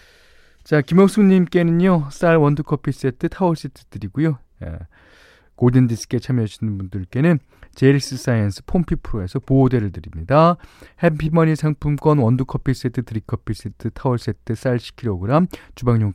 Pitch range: 100-155 Hz